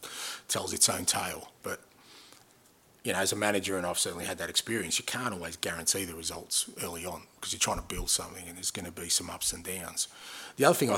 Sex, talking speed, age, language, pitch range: male, 235 wpm, 30-49, English, 85-95 Hz